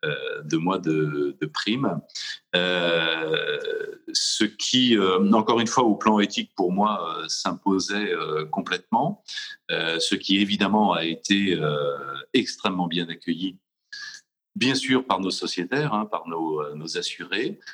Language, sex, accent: English, male, French